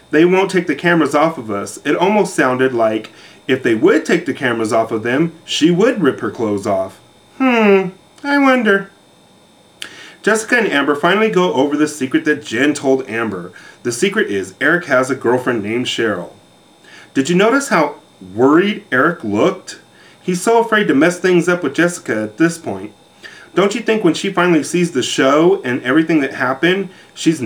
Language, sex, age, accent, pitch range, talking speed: English, male, 30-49, American, 130-195 Hz, 185 wpm